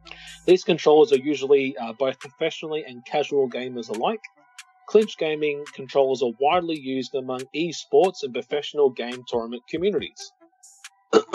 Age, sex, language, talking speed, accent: 30-49, male, English, 125 wpm, Australian